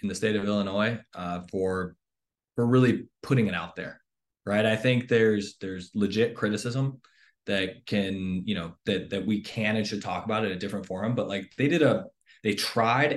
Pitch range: 100-120 Hz